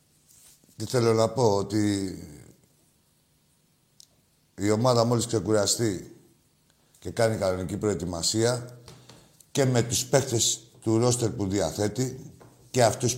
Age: 50-69